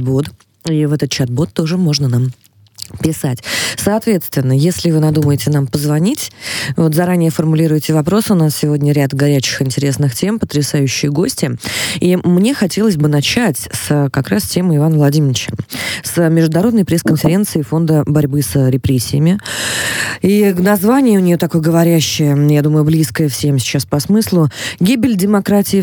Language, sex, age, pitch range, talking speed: Russian, female, 20-39, 140-175 Hz, 140 wpm